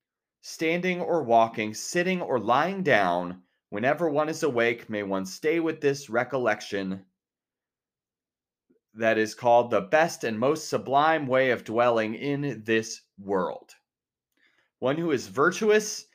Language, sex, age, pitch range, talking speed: English, male, 30-49, 105-165 Hz, 130 wpm